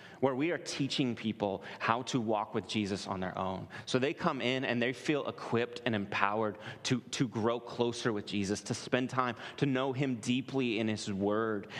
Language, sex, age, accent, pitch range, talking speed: English, male, 30-49, American, 120-150 Hz, 200 wpm